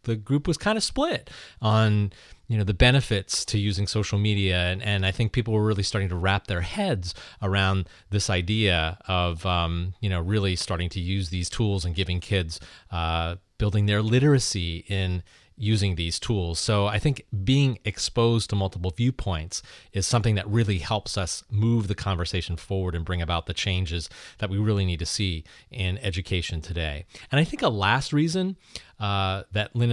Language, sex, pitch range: English, male, 95-120 Hz